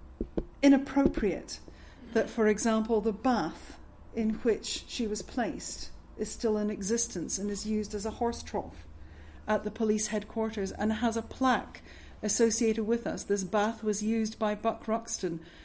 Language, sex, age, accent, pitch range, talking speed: English, female, 40-59, British, 205-235 Hz, 155 wpm